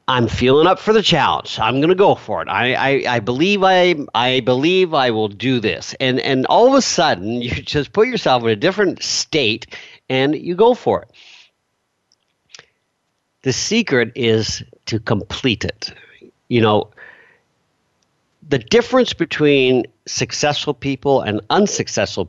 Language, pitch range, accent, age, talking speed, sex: English, 105-145 Hz, American, 50-69, 150 wpm, male